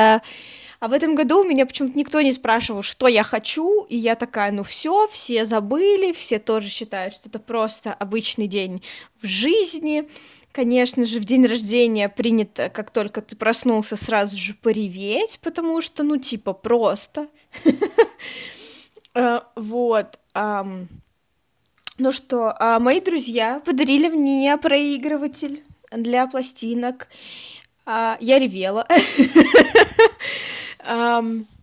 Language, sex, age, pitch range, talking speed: Russian, female, 20-39, 225-275 Hz, 120 wpm